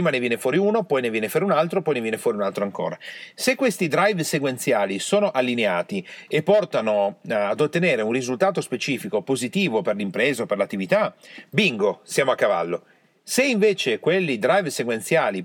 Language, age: Italian, 40-59